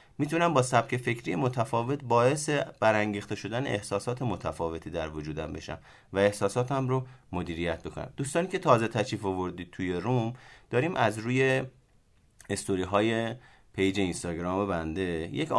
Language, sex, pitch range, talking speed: Persian, male, 95-130 Hz, 135 wpm